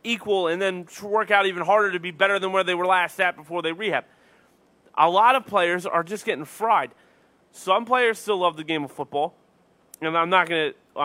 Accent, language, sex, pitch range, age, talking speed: American, English, male, 165-215 Hz, 30-49, 210 wpm